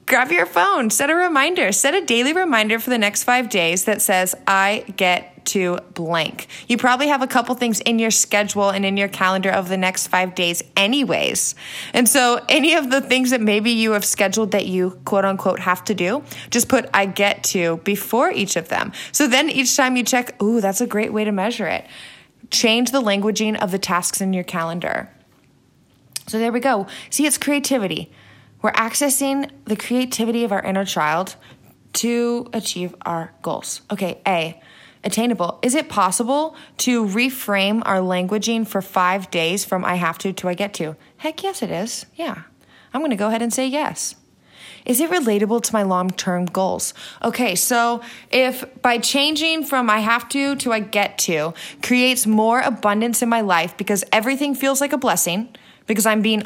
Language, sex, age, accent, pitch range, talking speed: English, female, 20-39, American, 190-250 Hz, 190 wpm